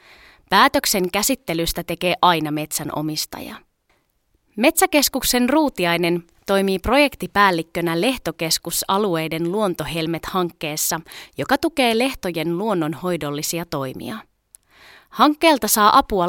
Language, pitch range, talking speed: Finnish, 165-240 Hz, 75 wpm